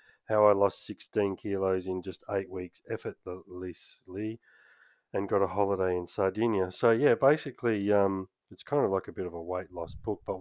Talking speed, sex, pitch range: 185 wpm, male, 90-100 Hz